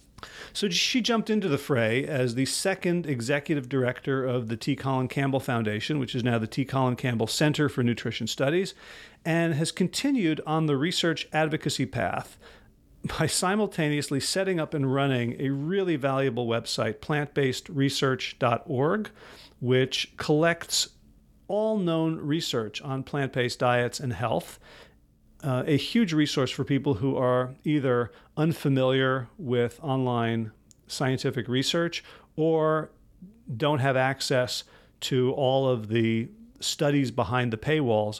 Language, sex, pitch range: English, male, 125-160 Hz